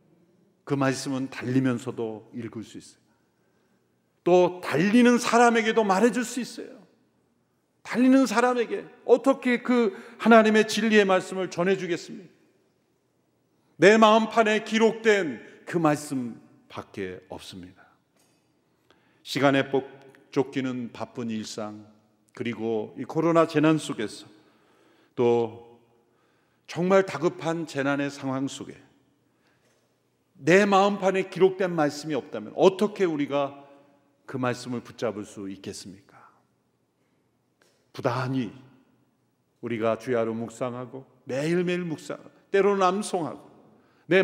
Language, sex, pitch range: Korean, male, 115-190 Hz